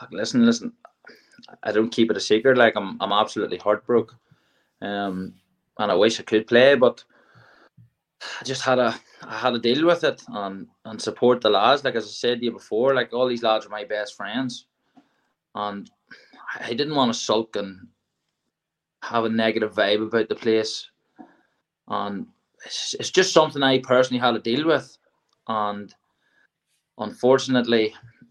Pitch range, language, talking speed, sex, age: 105-125 Hz, English, 165 wpm, male, 20-39